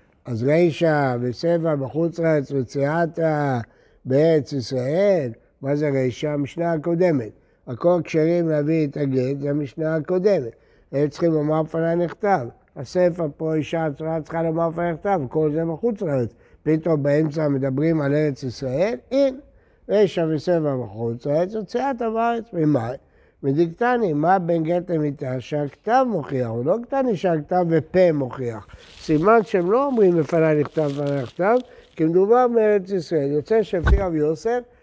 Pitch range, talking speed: 145-195 Hz, 140 wpm